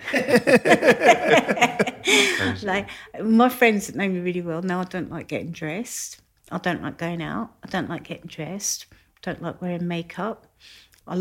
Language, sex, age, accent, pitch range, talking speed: English, female, 50-69, British, 150-180 Hz, 160 wpm